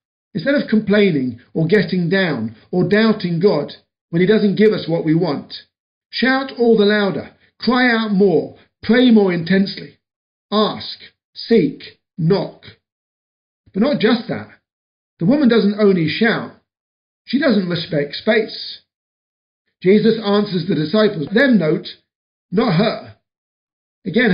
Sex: male